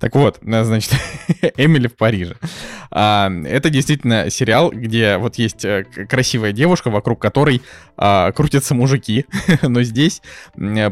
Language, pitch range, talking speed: Russian, 105-130 Hz, 110 wpm